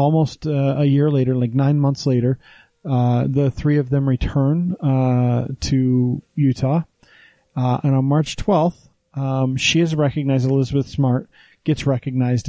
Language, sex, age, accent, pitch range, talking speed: English, male, 30-49, American, 125-145 Hz, 150 wpm